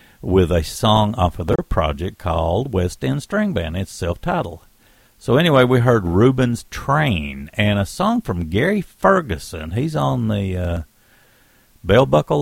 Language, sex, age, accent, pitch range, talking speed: English, male, 60-79, American, 85-125 Hz, 155 wpm